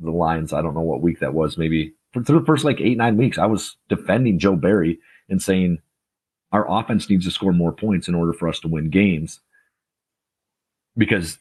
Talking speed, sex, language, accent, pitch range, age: 210 wpm, male, English, American, 80-95 Hz, 40-59